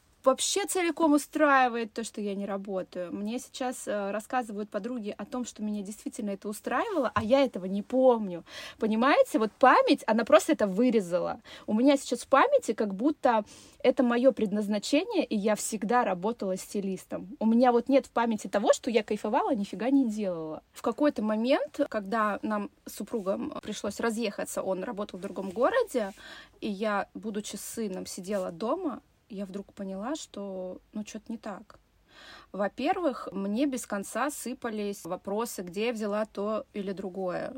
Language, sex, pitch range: Russian, female, 205-265 Hz